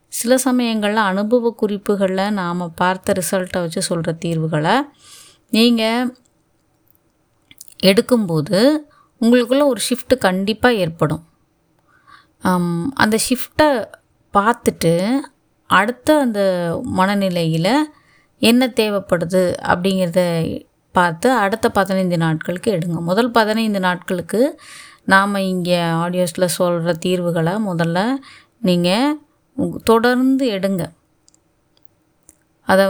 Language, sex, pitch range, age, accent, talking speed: Tamil, female, 180-235 Hz, 20-39, native, 80 wpm